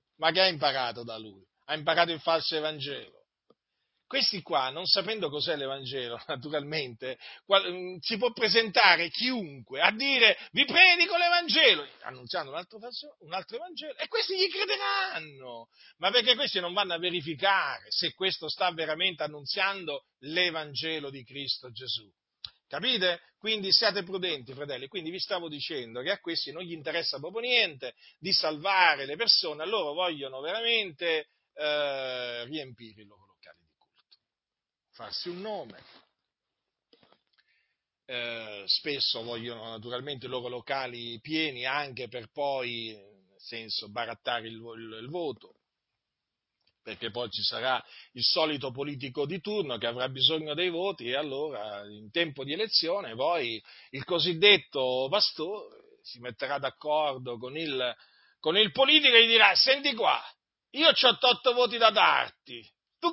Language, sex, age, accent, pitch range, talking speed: Italian, male, 40-59, native, 125-200 Hz, 140 wpm